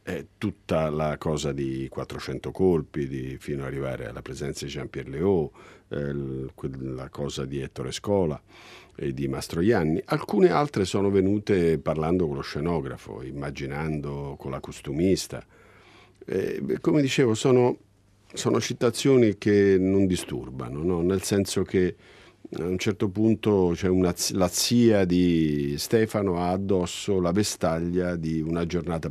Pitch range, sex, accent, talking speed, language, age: 75-105 Hz, male, native, 140 wpm, Italian, 50-69